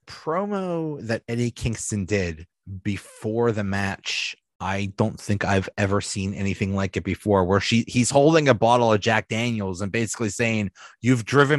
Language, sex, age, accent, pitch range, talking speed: English, male, 30-49, American, 115-160 Hz, 165 wpm